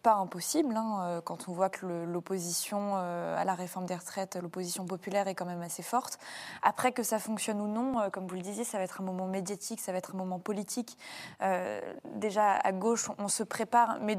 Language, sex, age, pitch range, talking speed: French, female, 20-39, 190-225 Hz, 225 wpm